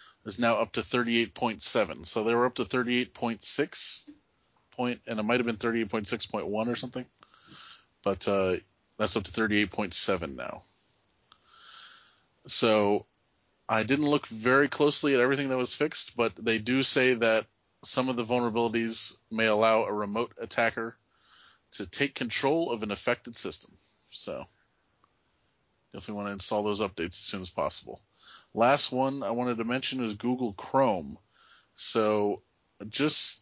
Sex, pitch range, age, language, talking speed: male, 105-125 Hz, 30-49, English, 145 wpm